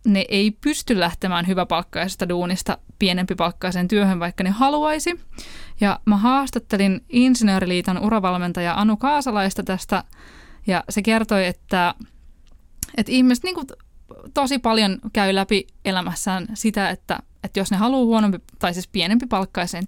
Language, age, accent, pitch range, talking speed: Finnish, 20-39, native, 180-230 Hz, 125 wpm